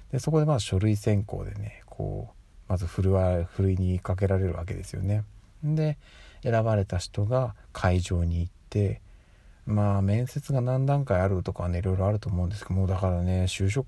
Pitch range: 90-115 Hz